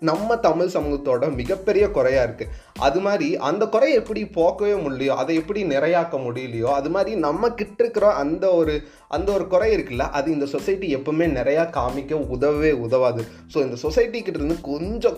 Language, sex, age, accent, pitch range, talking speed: Tamil, male, 20-39, native, 140-210 Hz, 160 wpm